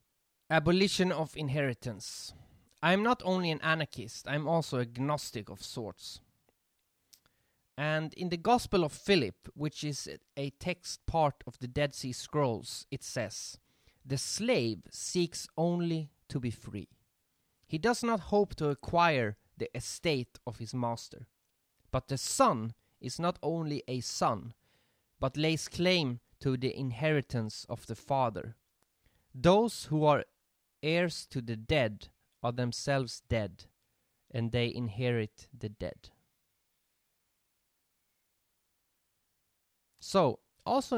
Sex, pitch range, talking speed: male, 115-170 Hz, 125 wpm